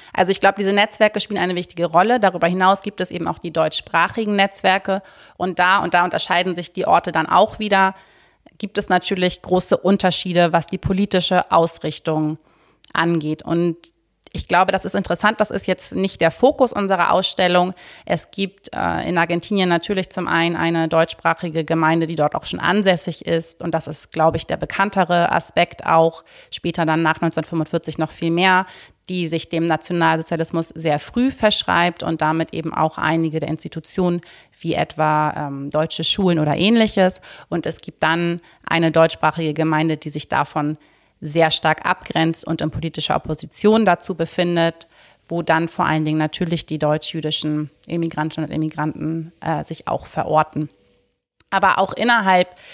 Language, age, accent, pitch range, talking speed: German, 30-49, German, 160-190 Hz, 165 wpm